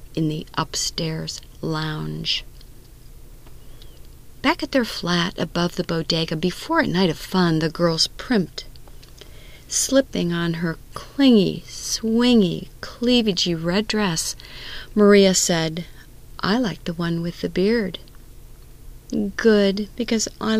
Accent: American